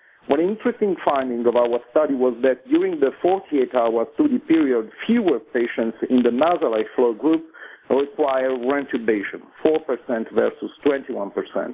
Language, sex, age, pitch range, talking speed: English, male, 50-69, 120-155 Hz, 125 wpm